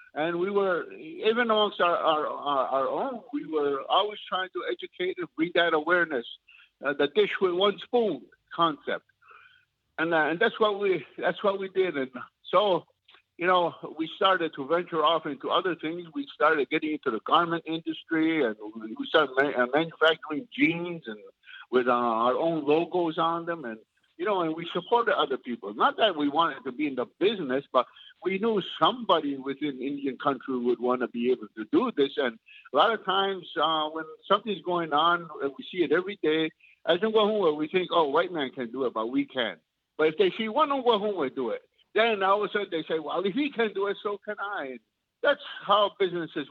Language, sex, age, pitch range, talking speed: English, male, 60-79, 150-210 Hz, 205 wpm